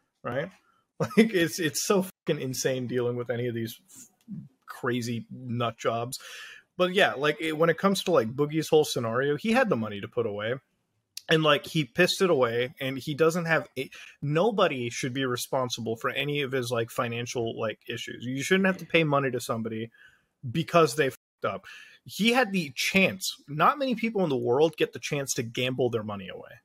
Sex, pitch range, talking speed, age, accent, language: male, 125-175 Hz, 200 wpm, 30-49, American, English